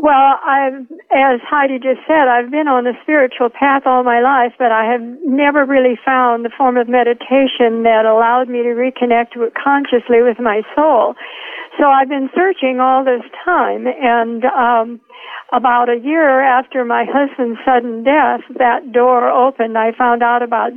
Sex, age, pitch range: female, 60-79, 235-270 Hz